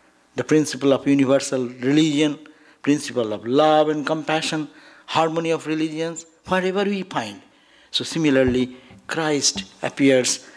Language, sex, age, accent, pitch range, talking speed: English, male, 60-79, Indian, 120-165 Hz, 115 wpm